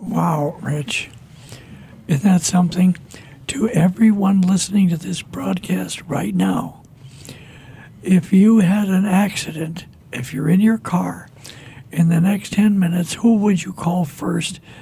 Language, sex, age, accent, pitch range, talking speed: English, male, 60-79, American, 150-195 Hz, 135 wpm